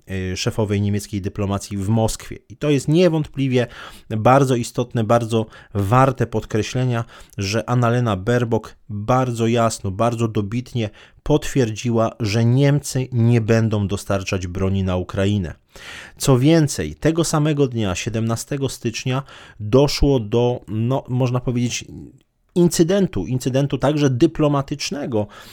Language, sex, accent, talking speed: Polish, male, native, 110 wpm